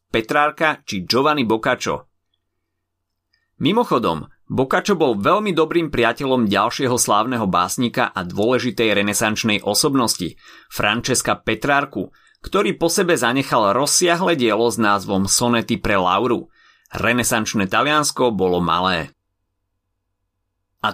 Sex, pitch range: male, 105-140 Hz